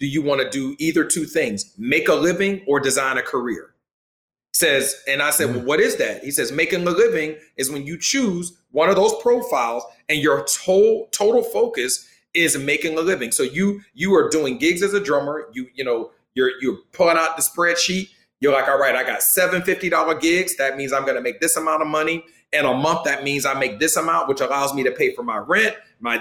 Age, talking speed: 40-59, 230 wpm